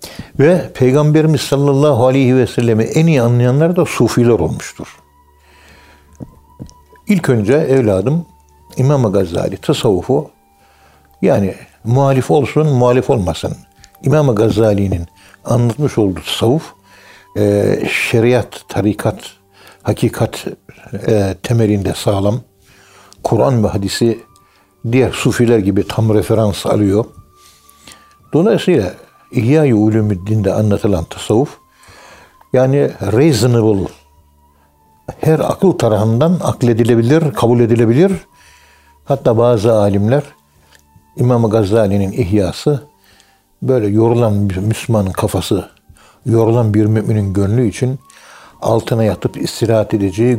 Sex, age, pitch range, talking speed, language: male, 60-79, 100-125 Hz, 90 wpm, Turkish